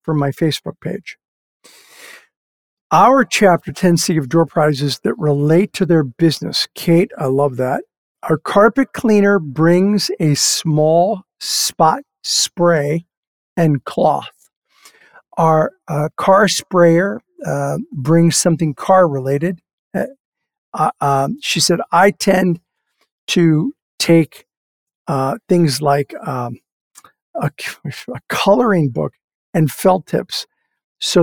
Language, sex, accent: English, male, American